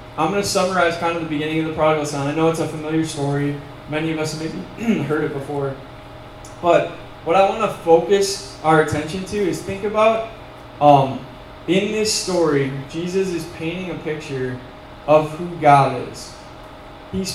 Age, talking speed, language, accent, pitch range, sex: 10-29, 180 wpm, English, American, 145-180 Hz, male